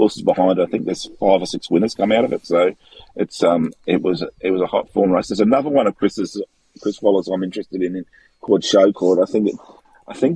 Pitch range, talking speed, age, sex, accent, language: 90-110 Hz, 250 wpm, 30-49, male, Australian, English